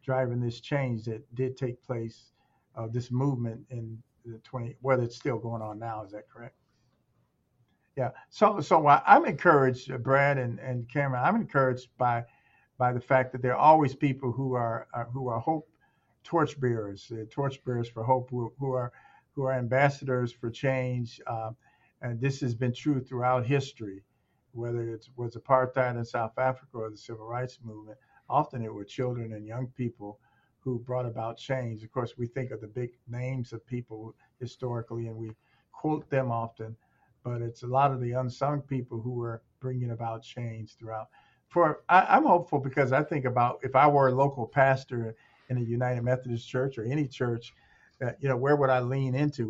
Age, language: 50-69, English